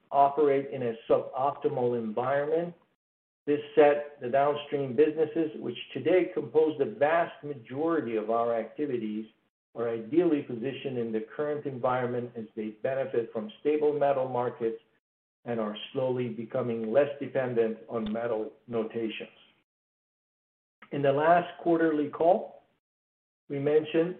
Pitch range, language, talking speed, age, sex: 120-150 Hz, English, 120 wpm, 50-69, male